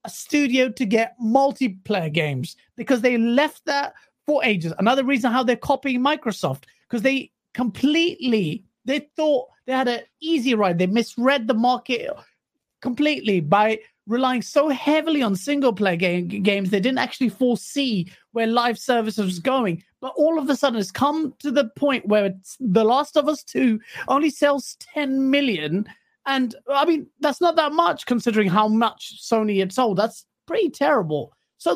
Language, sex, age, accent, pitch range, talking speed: English, male, 30-49, British, 210-280 Hz, 165 wpm